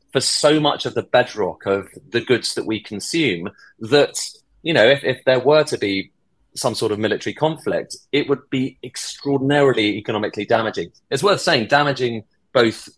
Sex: male